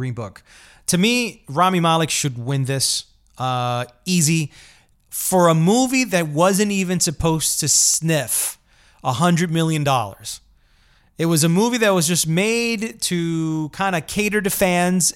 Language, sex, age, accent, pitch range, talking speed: English, male, 30-49, American, 140-190 Hz, 150 wpm